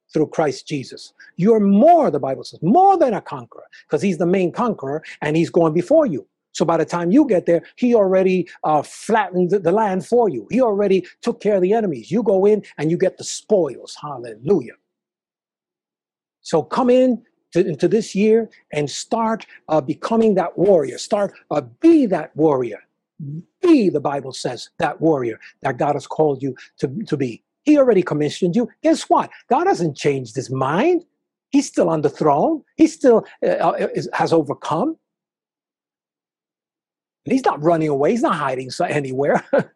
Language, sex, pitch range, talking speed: English, male, 160-240 Hz, 170 wpm